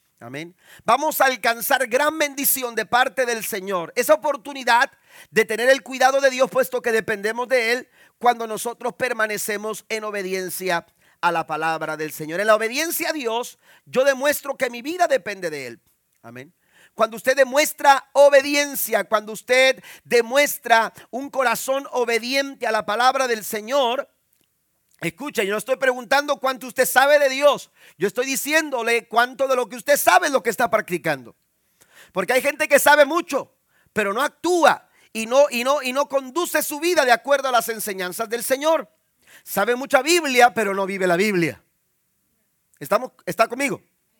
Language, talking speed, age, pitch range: Spanish, 165 wpm, 40-59, 220-280 Hz